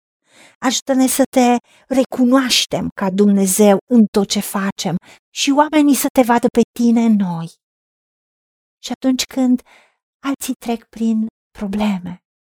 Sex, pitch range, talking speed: female, 195-255 Hz, 125 wpm